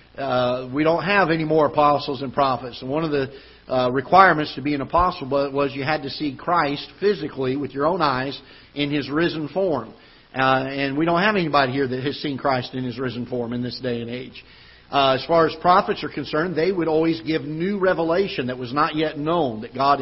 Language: English